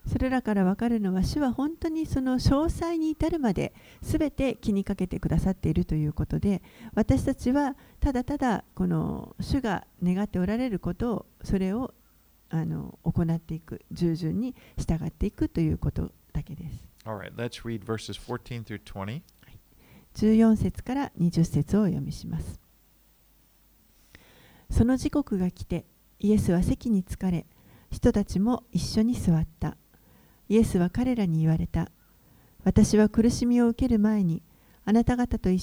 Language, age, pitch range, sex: Japanese, 50-69, 165-230 Hz, female